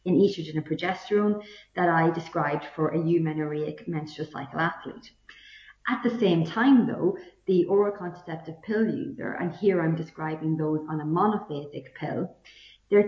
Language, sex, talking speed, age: English, female, 145 wpm, 30-49